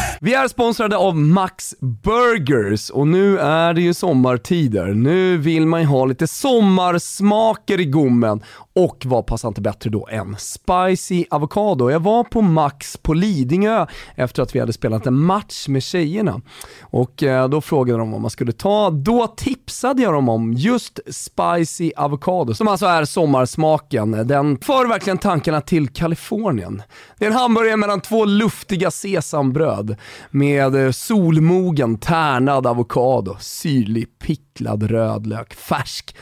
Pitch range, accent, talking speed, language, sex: 125-190 Hz, native, 140 wpm, Swedish, male